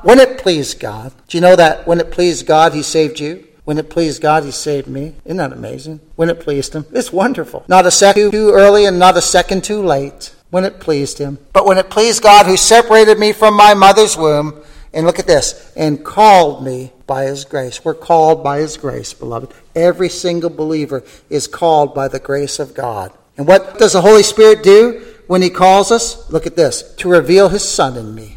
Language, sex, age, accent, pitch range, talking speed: English, male, 50-69, American, 150-190 Hz, 220 wpm